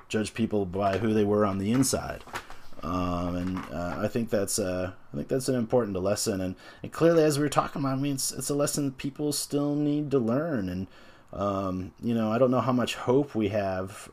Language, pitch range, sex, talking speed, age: English, 95-125 Hz, male, 225 wpm, 30-49